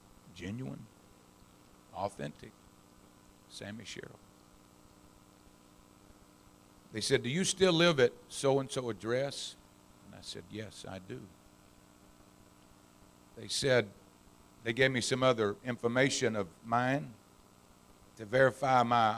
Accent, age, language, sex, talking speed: American, 60-79, English, male, 100 wpm